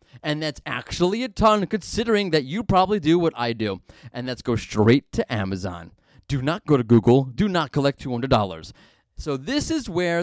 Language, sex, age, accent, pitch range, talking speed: English, male, 30-49, American, 120-185 Hz, 190 wpm